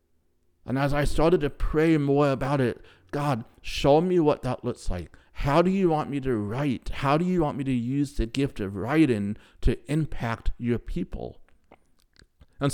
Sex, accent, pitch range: male, American, 105-135 Hz